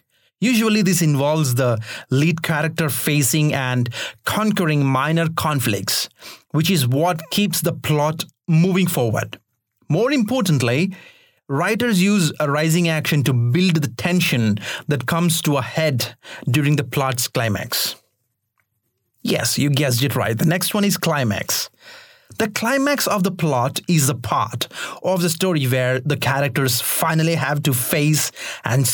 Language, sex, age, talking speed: English, male, 30-49, 140 wpm